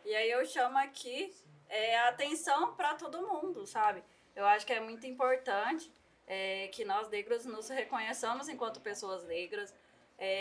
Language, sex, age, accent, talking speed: Portuguese, female, 20-39, Brazilian, 160 wpm